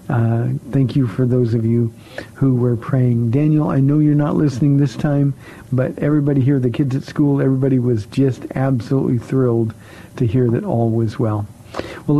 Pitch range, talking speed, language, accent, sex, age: 125-150 Hz, 180 wpm, English, American, male, 50-69